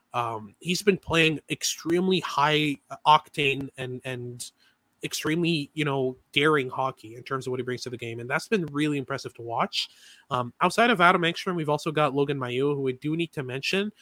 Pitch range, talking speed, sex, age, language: 130-165 Hz, 195 wpm, male, 20-39, English